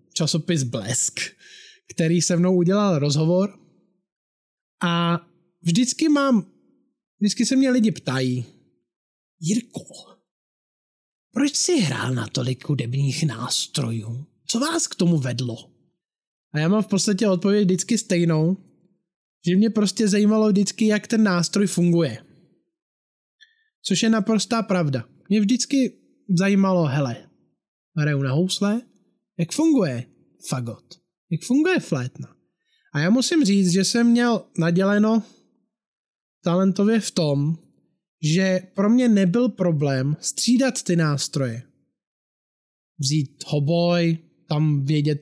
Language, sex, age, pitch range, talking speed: Czech, male, 20-39, 150-210 Hz, 115 wpm